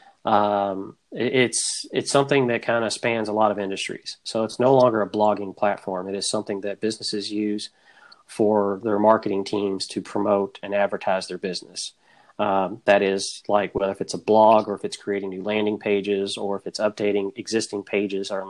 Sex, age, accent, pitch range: male, 40-59, American, 100-115 Hz